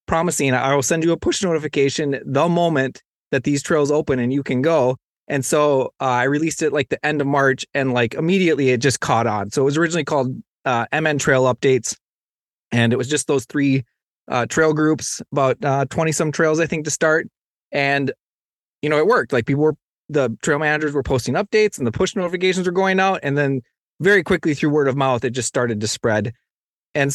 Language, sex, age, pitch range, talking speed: English, male, 20-39, 130-165 Hz, 215 wpm